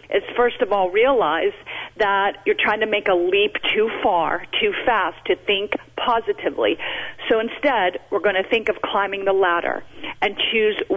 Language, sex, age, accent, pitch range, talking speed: English, female, 40-59, American, 205-290 Hz, 170 wpm